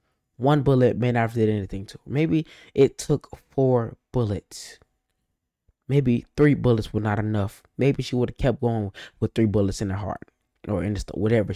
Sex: male